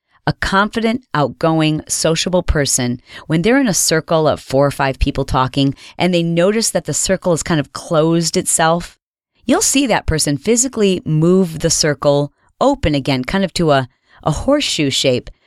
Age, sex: 40-59, female